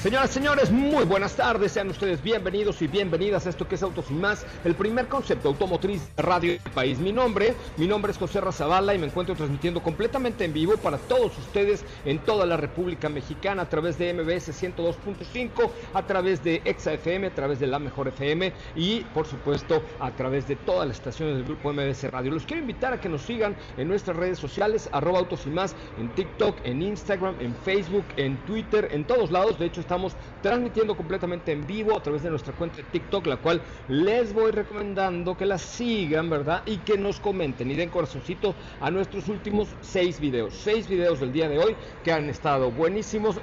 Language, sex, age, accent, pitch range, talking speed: Spanish, male, 50-69, Mexican, 150-200 Hz, 205 wpm